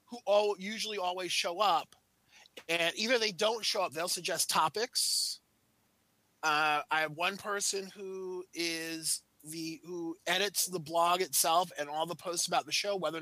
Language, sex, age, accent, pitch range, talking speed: English, male, 30-49, American, 165-200 Hz, 165 wpm